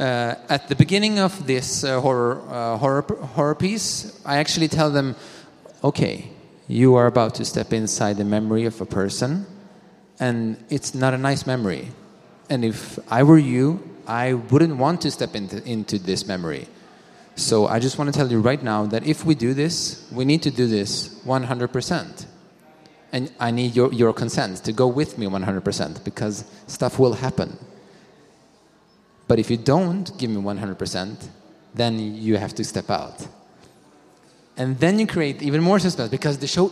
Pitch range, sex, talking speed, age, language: 115-155 Hz, male, 175 wpm, 30-49, German